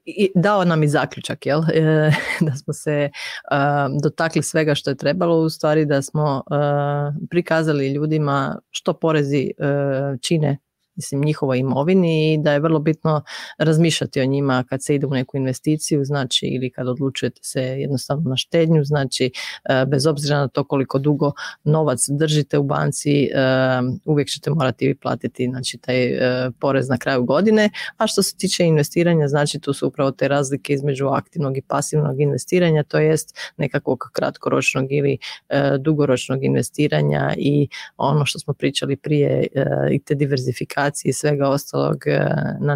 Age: 30-49